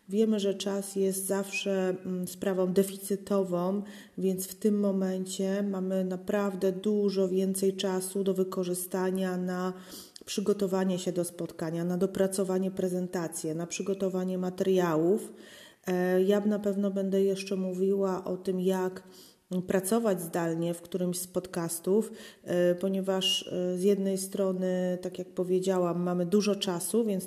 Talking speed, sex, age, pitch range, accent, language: 120 wpm, female, 30-49, 185-200 Hz, native, Polish